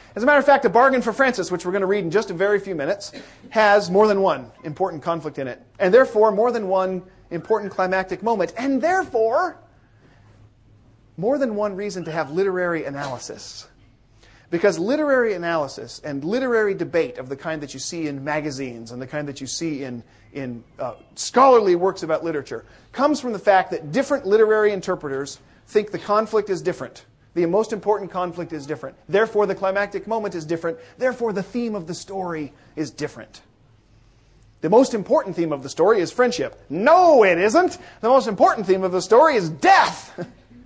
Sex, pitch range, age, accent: male, 135-215 Hz, 40-59, American